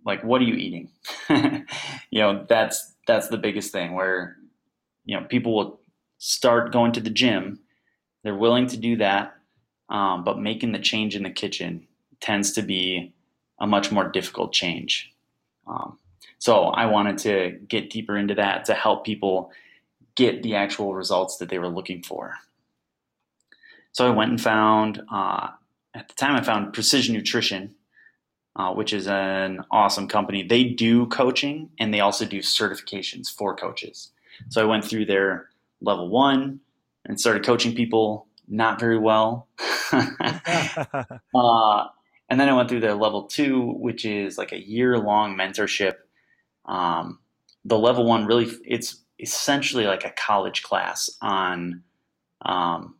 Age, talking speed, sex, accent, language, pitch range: 20-39, 155 wpm, male, American, English, 100-120 Hz